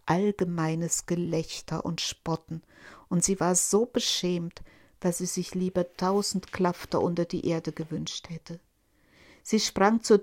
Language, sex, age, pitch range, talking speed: German, female, 60-79, 165-205 Hz, 135 wpm